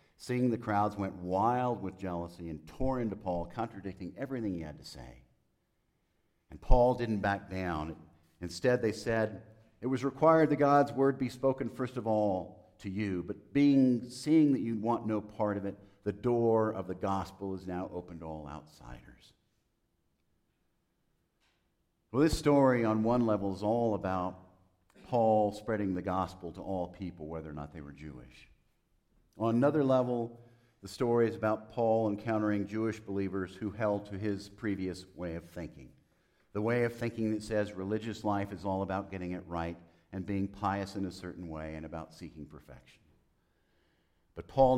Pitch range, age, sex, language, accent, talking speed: 85-115 Hz, 50-69, male, English, American, 170 wpm